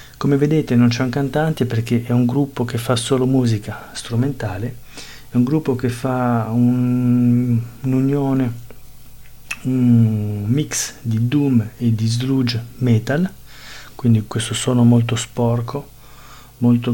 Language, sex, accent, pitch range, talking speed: Italian, male, native, 115-130 Hz, 130 wpm